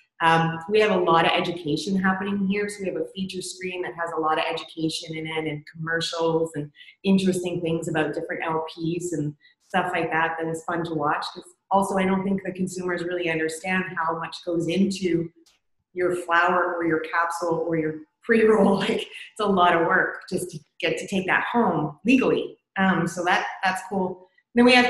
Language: English